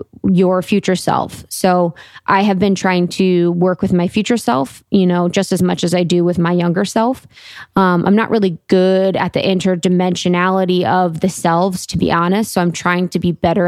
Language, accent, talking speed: English, American, 200 wpm